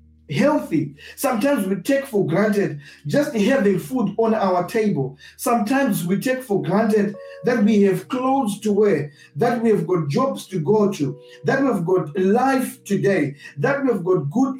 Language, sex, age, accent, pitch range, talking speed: English, male, 50-69, South African, 185-245 Hz, 165 wpm